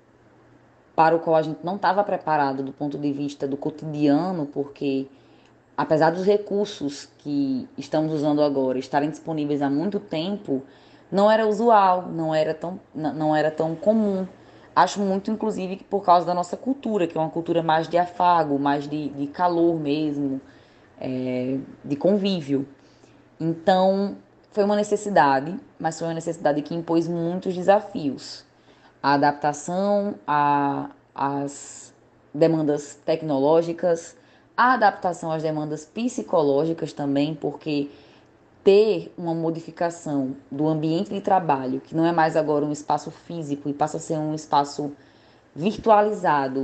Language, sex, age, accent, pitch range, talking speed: Portuguese, female, 10-29, Brazilian, 145-185 Hz, 140 wpm